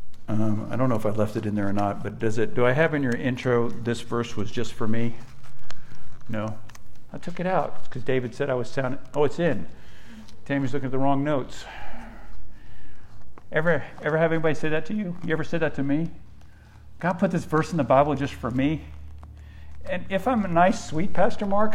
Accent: American